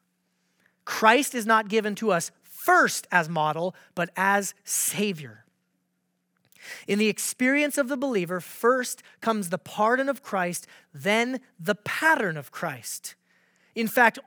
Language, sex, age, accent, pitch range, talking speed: English, male, 30-49, American, 180-230 Hz, 130 wpm